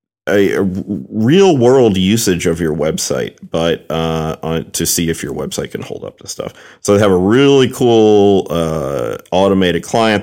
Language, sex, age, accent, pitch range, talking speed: English, male, 40-59, American, 85-110 Hz, 170 wpm